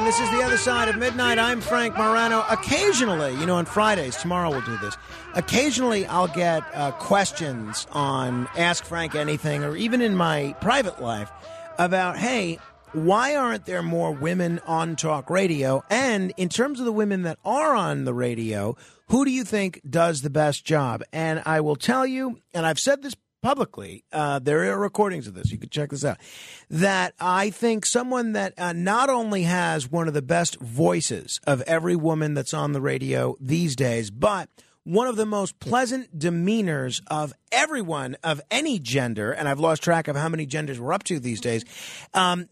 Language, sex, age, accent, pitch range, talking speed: English, male, 40-59, American, 150-215 Hz, 190 wpm